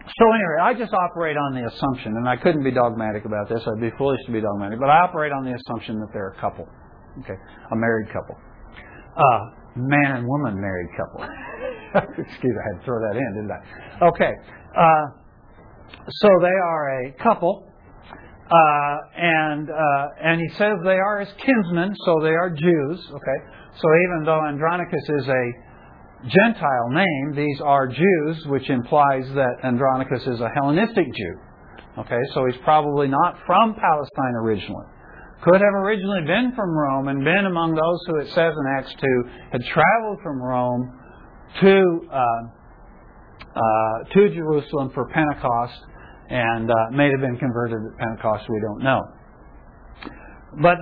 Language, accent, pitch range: English, American, 120-170 Hz